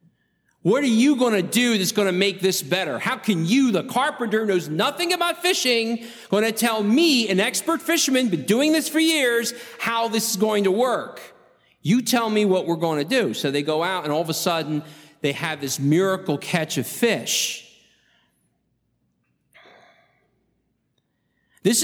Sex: male